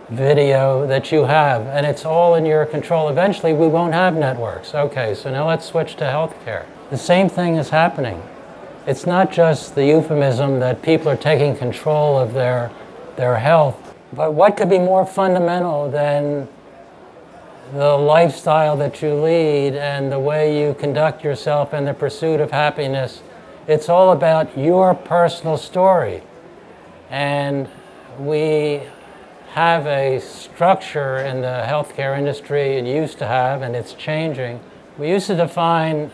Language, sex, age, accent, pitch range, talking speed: English, male, 60-79, American, 135-165 Hz, 150 wpm